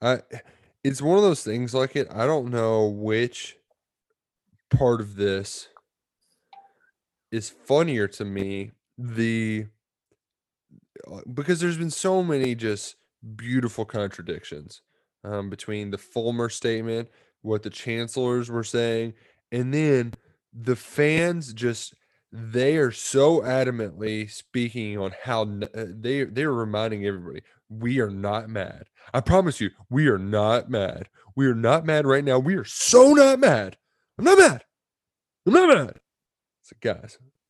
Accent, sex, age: American, male, 20-39